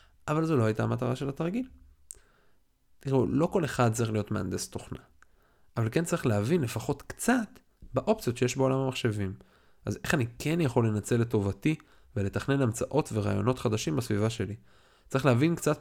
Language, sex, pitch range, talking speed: Hebrew, male, 105-135 Hz, 155 wpm